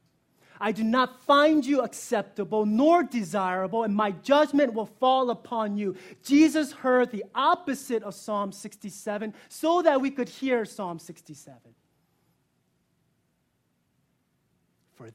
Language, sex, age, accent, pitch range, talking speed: English, male, 30-49, American, 150-225 Hz, 120 wpm